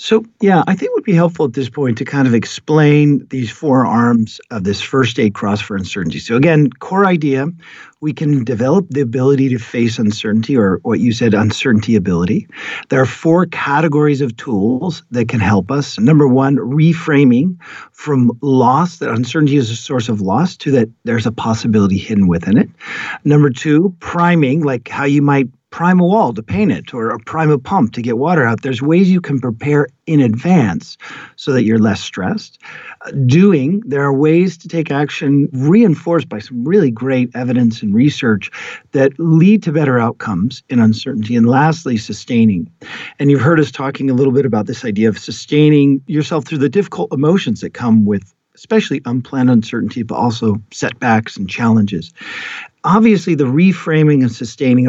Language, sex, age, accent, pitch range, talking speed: English, male, 50-69, American, 120-155 Hz, 185 wpm